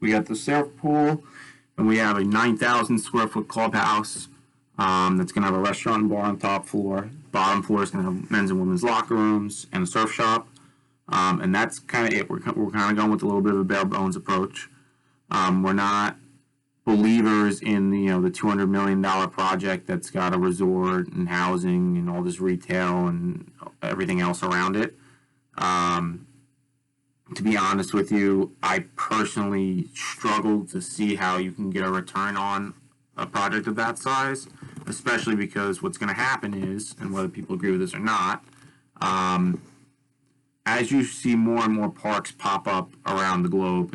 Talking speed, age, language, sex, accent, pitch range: 185 wpm, 30-49, English, male, American, 95-135 Hz